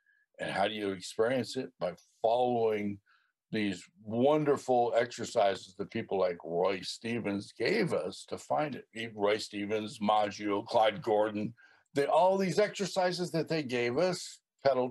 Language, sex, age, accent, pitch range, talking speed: English, male, 60-79, American, 105-170 Hz, 145 wpm